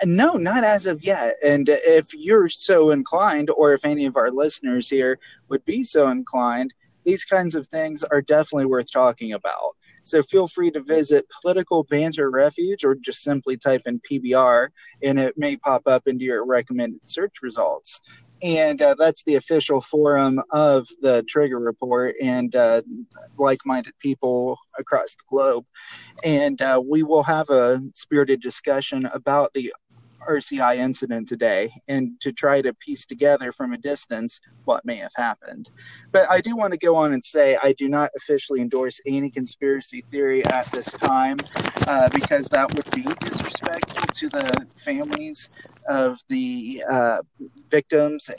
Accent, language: American, English